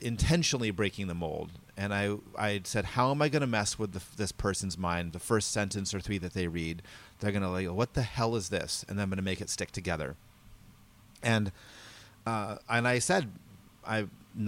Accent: American